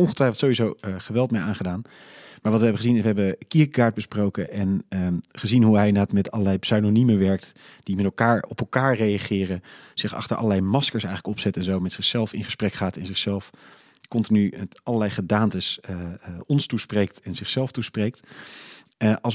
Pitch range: 100-120 Hz